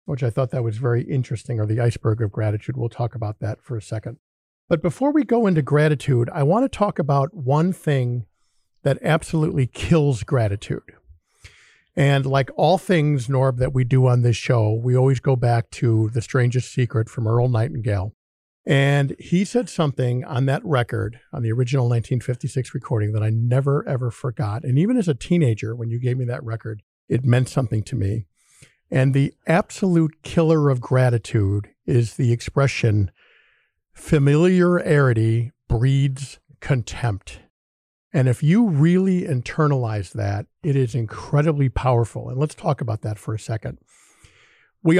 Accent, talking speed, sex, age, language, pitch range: American, 165 wpm, male, 50-69, English, 115-145 Hz